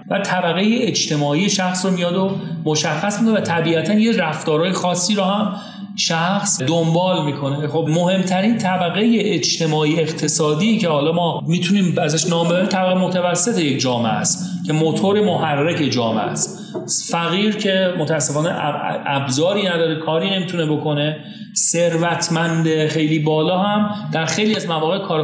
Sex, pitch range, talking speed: male, 150-190 Hz, 135 wpm